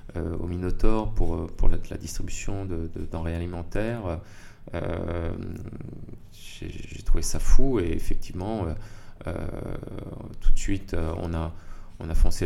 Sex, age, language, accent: male, 30-49, French, French